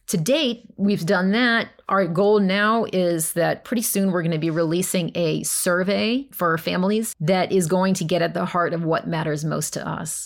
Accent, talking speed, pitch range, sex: American, 210 wpm, 175-215 Hz, female